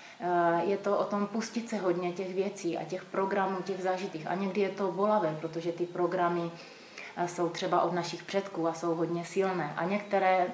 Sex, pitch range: female, 175-195 Hz